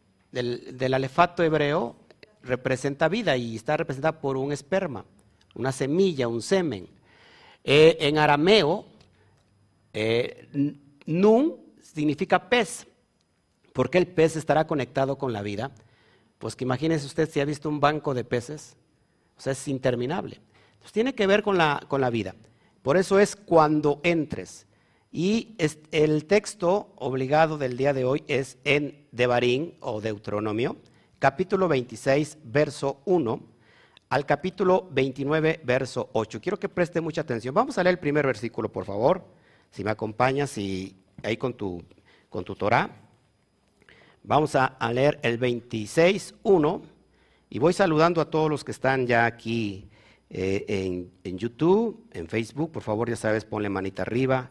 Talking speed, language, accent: 150 wpm, Spanish, Mexican